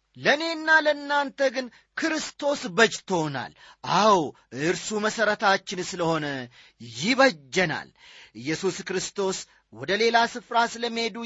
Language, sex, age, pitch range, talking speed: Amharic, male, 30-49, 160-245 Hz, 85 wpm